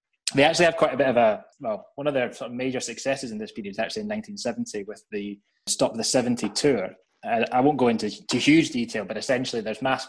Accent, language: British, English